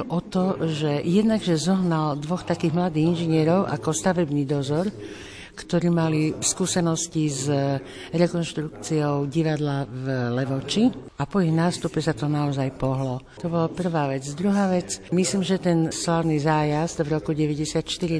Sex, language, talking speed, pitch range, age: female, Slovak, 140 wpm, 155-185 Hz, 60-79